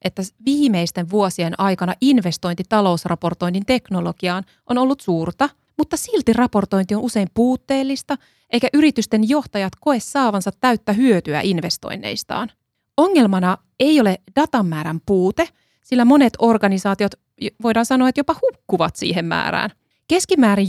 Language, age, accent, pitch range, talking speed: English, 20-39, Finnish, 185-250 Hz, 115 wpm